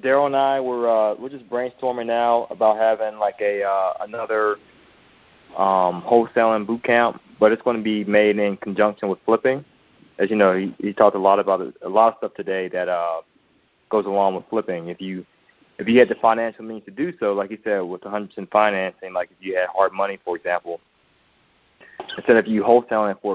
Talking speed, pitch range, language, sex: 210 wpm, 100-115 Hz, English, male